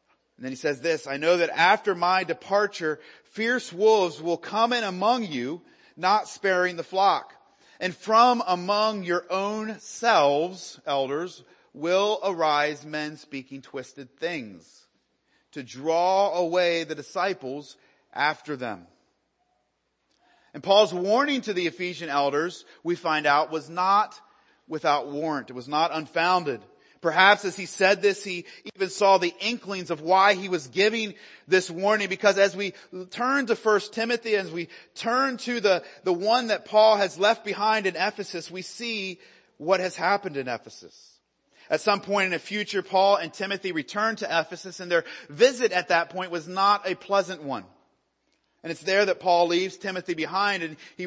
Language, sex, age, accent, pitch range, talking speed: English, male, 30-49, American, 165-205 Hz, 160 wpm